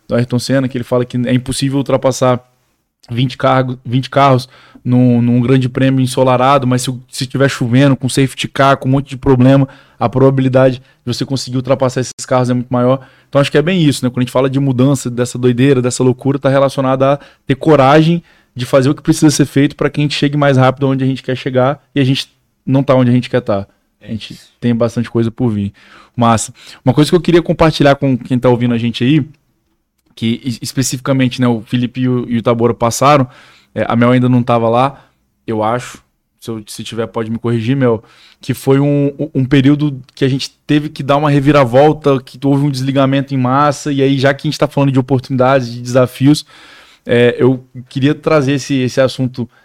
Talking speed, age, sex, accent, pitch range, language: 220 wpm, 20-39, male, Brazilian, 125-140 Hz, Portuguese